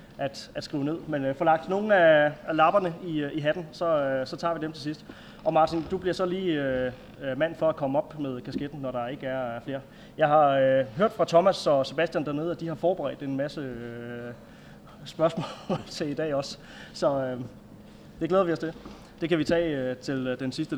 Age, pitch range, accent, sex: 20-39, 135-165 Hz, native, male